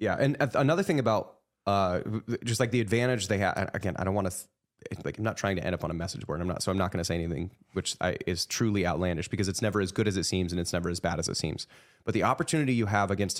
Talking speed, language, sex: 280 wpm, English, male